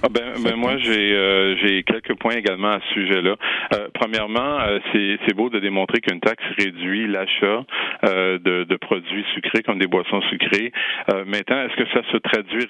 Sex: male